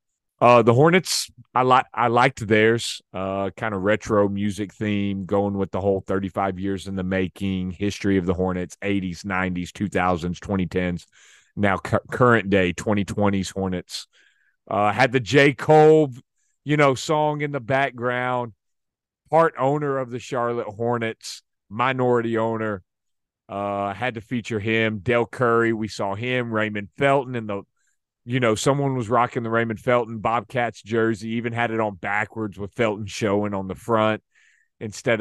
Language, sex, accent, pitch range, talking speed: English, male, American, 100-125 Hz, 155 wpm